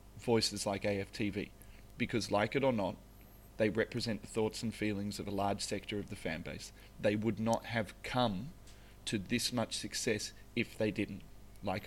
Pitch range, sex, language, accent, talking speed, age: 100-130 Hz, male, English, Australian, 175 wpm, 30-49